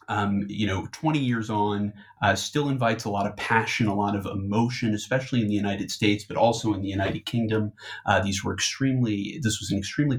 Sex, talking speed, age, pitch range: male, 210 wpm, 30-49, 100-115 Hz